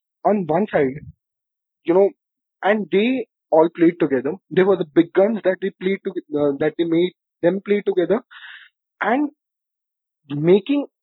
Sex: male